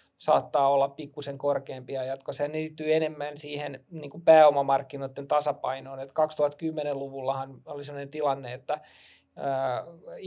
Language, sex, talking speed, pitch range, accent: Finnish, male, 110 wpm, 135-155 Hz, native